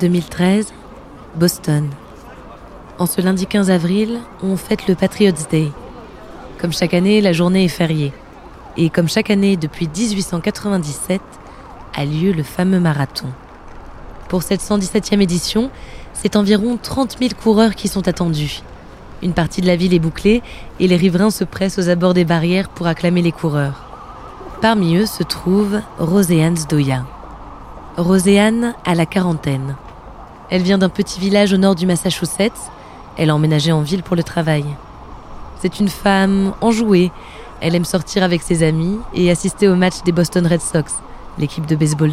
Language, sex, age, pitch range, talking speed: French, female, 20-39, 165-200 Hz, 155 wpm